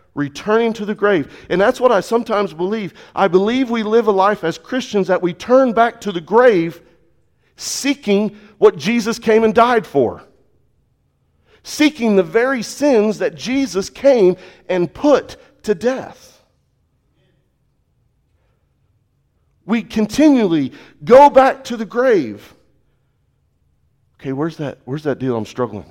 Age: 40-59